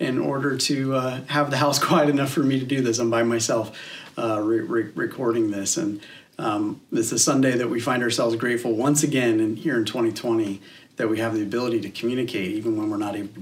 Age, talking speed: 40-59, 225 wpm